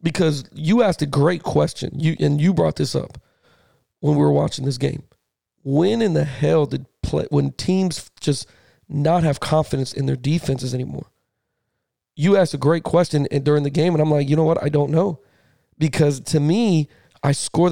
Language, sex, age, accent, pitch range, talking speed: English, male, 40-59, American, 140-175 Hz, 195 wpm